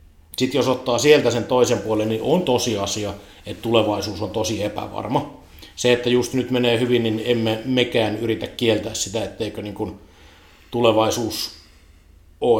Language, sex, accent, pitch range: Finnish, male, native, 100-120 Hz